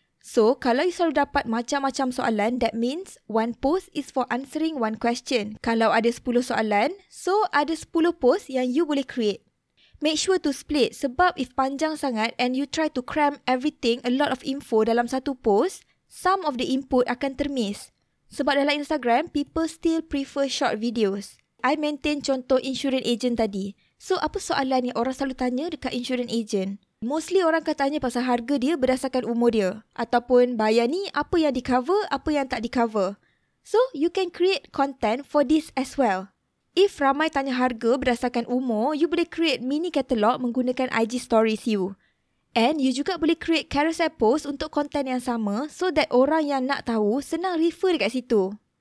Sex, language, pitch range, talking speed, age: female, Malay, 235-300 Hz, 180 wpm, 20-39